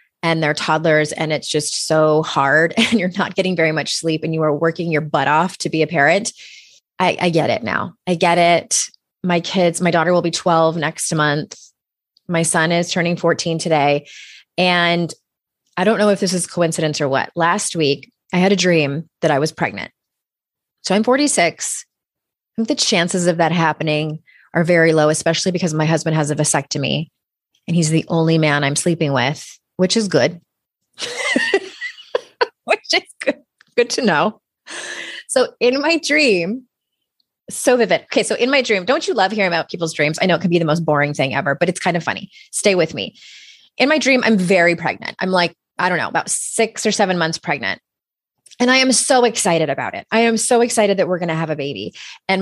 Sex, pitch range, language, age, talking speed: female, 160-205 Hz, English, 20-39, 205 wpm